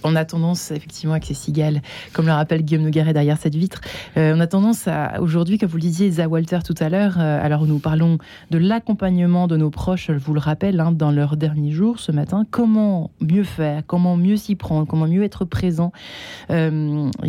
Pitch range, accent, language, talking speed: 155-180 Hz, French, French, 220 wpm